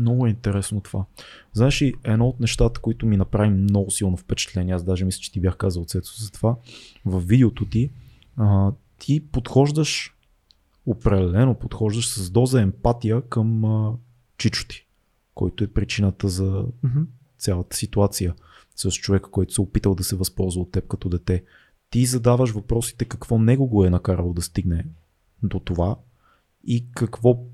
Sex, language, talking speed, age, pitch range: male, Bulgarian, 155 wpm, 30-49, 100-130 Hz